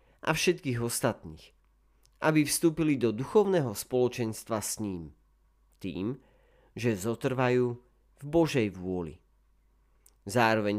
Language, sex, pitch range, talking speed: Slovak, male, 90-125 Hz, 95 wpm